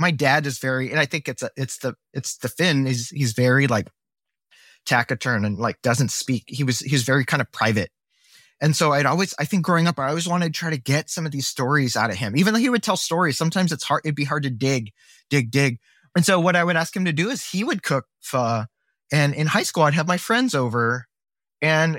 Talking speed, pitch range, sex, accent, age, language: 255 wpm, 125-165 Hz, male, American, 20-39, English